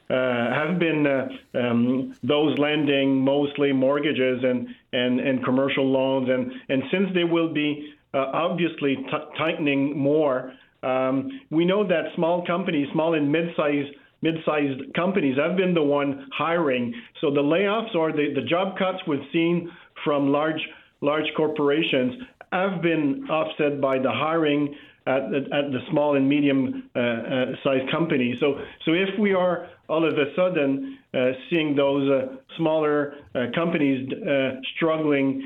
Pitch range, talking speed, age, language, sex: 135-155 Hz, 155 wpm, 50-69, English, male